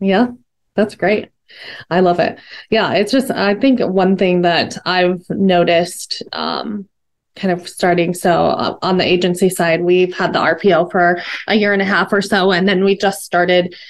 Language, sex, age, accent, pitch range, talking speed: English, female, 20-39, American, 170-195 Hz, 180 wpm